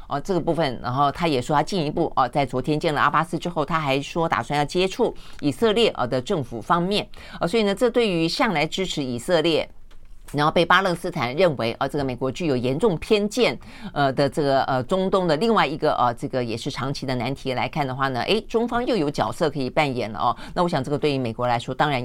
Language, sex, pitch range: Chinese, female, 135-180 Hz